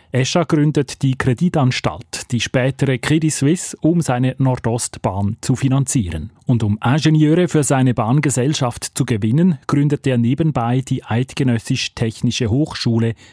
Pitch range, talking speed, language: 110-145 Hz, 120 wpm, German